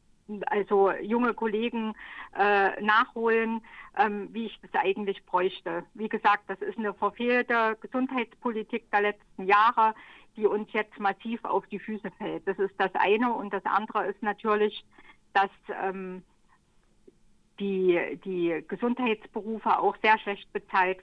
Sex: female